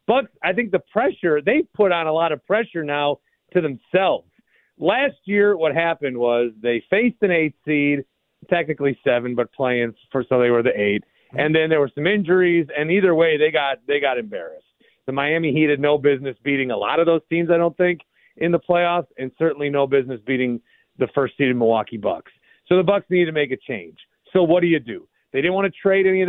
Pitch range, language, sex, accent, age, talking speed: 140-180 Hz, English, male, American, 40-59, 225 wpm